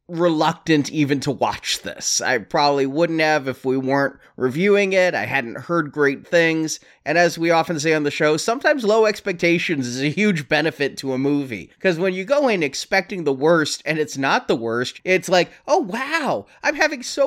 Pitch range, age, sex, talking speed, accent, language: 140-190 Hz, 30-49, male, 200 wpm, American, English